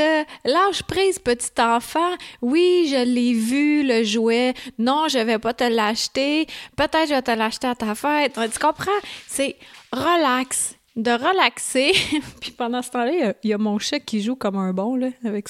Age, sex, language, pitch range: 30-49, female, French, 225-310 Hz